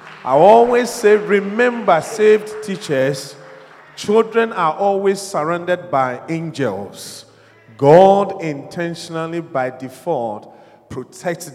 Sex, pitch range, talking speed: male, 130-180 Hz, 90 wpm